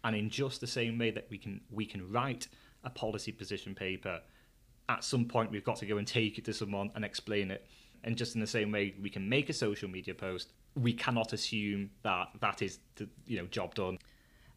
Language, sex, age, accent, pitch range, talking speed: English, male, 30-49, British, 105-140 Hz, 225 wpm